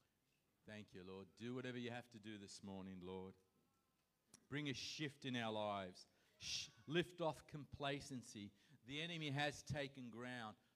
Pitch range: 120-155 Hz